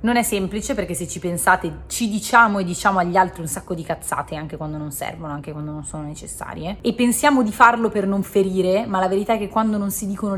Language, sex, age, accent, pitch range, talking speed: English, female, 30-49, Italian, 155-190 Hz, 245 wpm